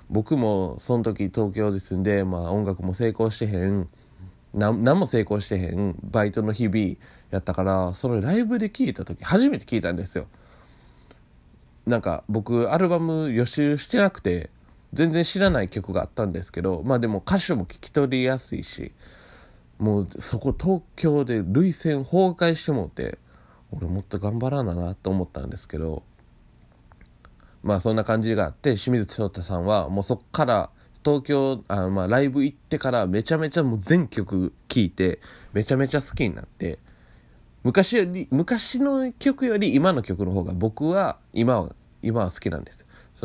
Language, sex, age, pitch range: Japanese, male, 20-39, 90-140 Hz